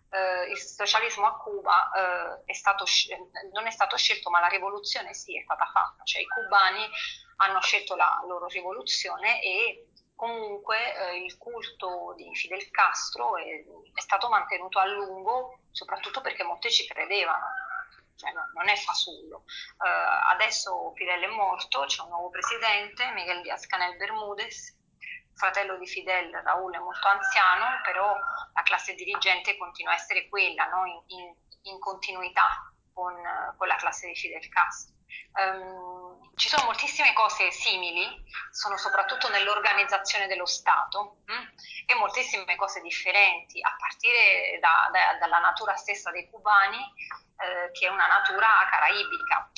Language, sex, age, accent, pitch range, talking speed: Italian, female, 30-49, native, 185-240 Hz, 150 wpm